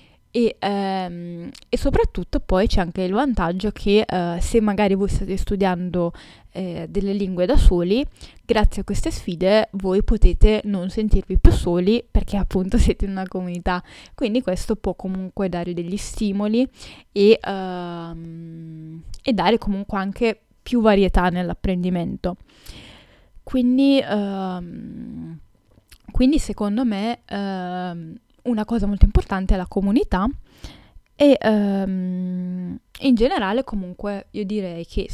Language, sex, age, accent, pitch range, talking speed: Italian, female, 10-29, native, 180-210 Hz, 125 wpm